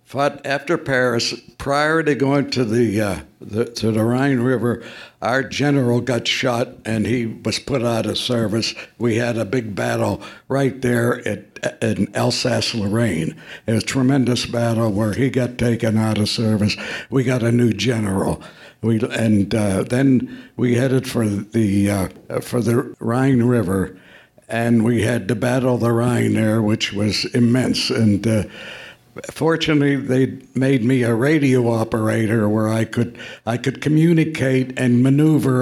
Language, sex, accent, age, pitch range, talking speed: English, male, American, 60-79, 115-130 Hz, 155 wpm